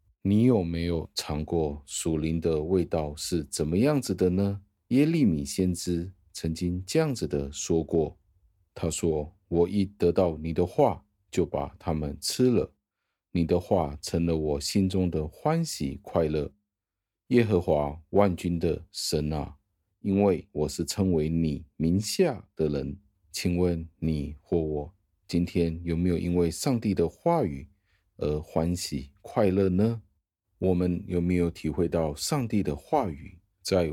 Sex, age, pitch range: male, 50-69, 75-95 Hz